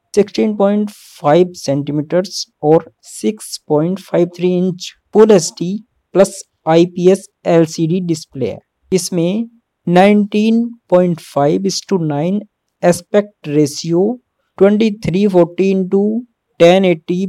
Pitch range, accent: 155-195 Hz, native